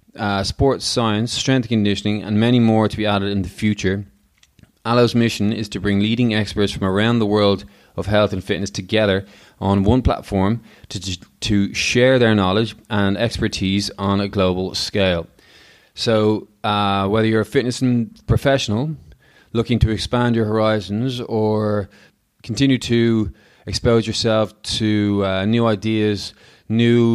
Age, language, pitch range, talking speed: 20-39, English, 100-115 Hz, 150 wpm